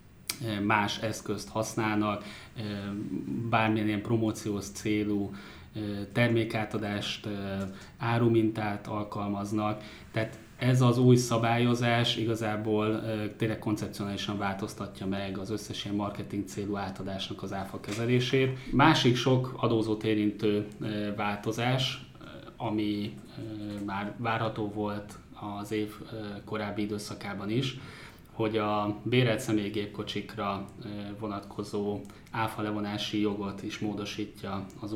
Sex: male